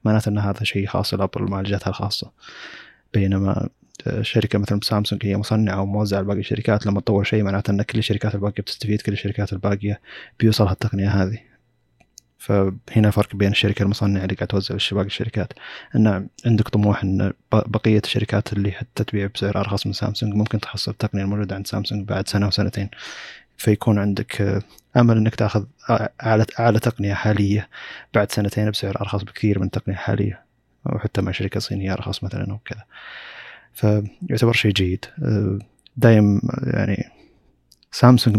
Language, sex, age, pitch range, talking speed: Arabic, male, 20-39, 100-110 Hz, 145 wpm